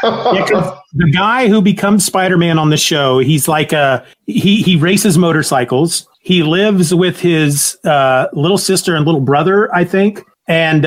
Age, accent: 40-59, American